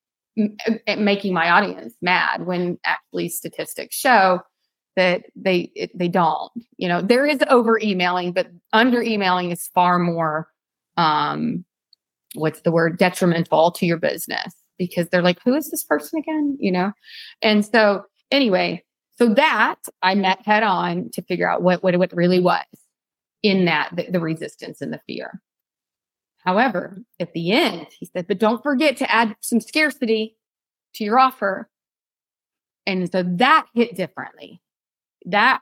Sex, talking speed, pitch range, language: female, 150 wpm, 180-230 Hz, English